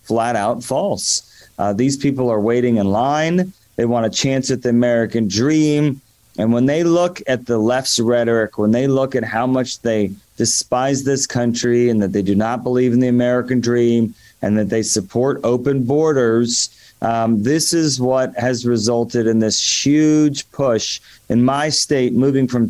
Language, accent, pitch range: English, American, 115-140 Hz